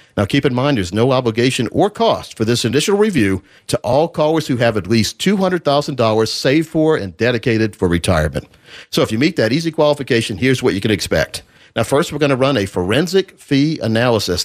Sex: male